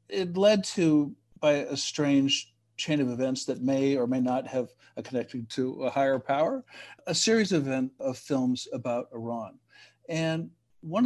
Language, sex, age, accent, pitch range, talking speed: English, male, 60-79, American, 125-160 Hz, 155 wpm